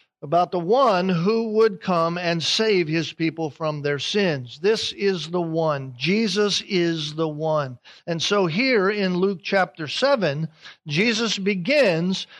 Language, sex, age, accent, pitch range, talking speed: English, male, 50-69, American, 155-210 Hz, 145 wpm